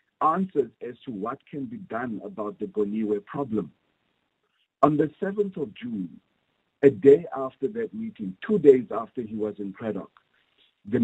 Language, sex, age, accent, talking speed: English, male, 50-69, South African, 160 wpm